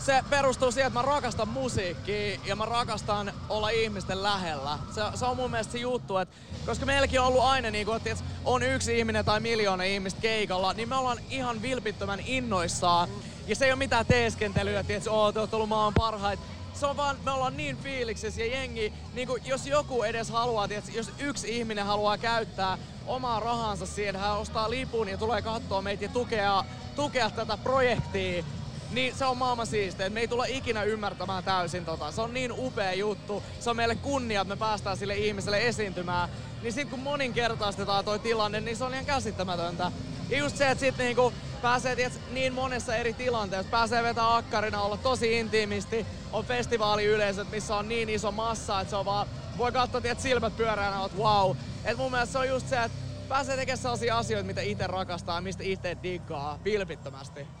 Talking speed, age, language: 195 wpm, 20-39, Finnish